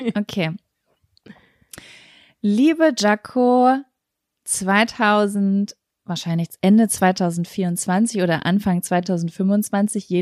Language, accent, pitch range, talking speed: German, German, 180-225 Hz, 65 wpm